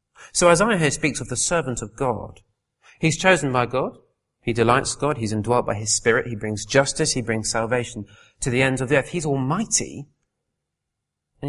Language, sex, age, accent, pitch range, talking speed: English, male, 30-49, British, 110-145 Hz, 195 wpm